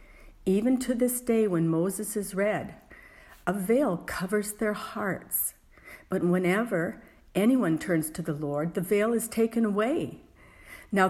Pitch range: 175-225 Hz